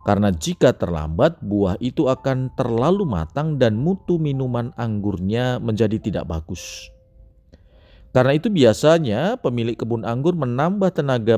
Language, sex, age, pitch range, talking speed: Indonesian, male, 40-59, 85-130 Hz, 120 wpm